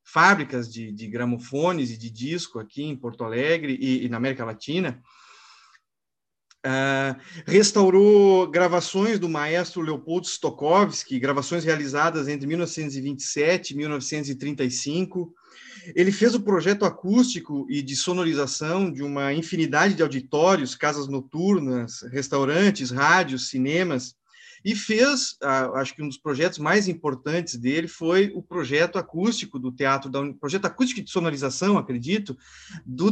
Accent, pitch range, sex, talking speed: Brazilian, 135-190 Hz, male, 125 wpm